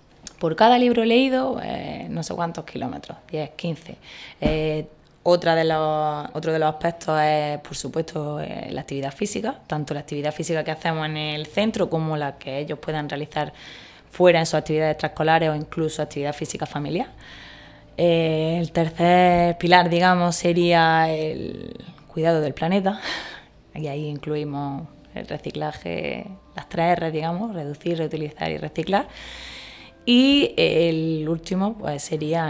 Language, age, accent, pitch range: Spanish, 20-39, Spanish, 155-180 Hz